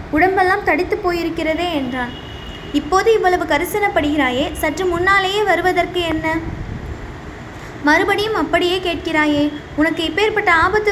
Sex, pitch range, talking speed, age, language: female, 305-370 Hz, 95 wpm, 20-39, Tamil